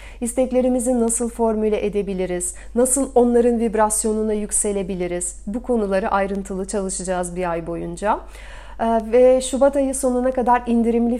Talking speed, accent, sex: 115 wpm, native, female